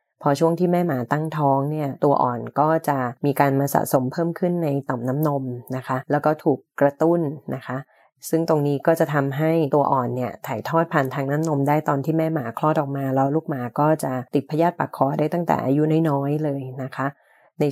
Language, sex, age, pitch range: Thai, female, 20-39, 140-160 Hz